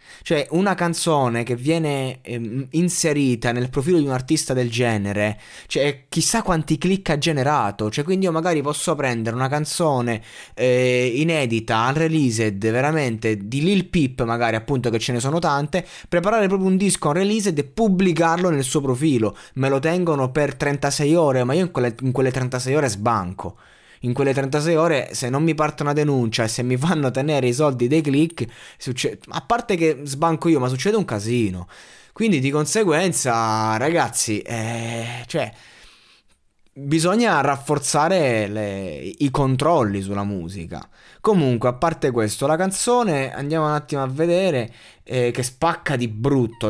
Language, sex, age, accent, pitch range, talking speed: Italian, male, 20-39, native, 115-165 Hz, 160 wpm